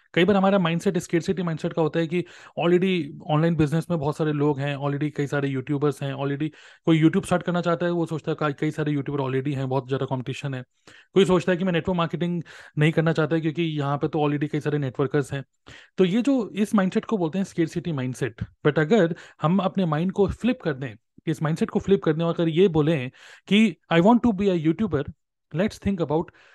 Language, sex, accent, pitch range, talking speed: Hindi, male, native, 145-180 Hz, 235 wpm